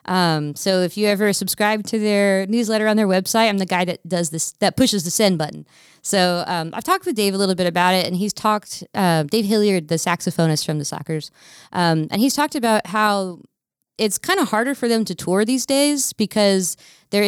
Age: 20-39